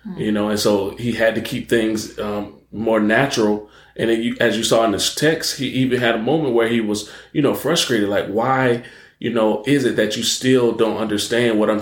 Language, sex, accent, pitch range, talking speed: English, male, American, 105-130 Hz, 230 wpm